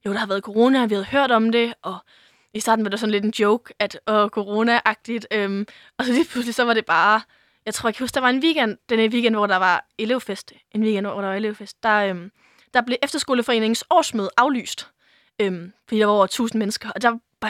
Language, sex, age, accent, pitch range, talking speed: Danish, female, 20-39, native, 205-240 Hz, 240 wpm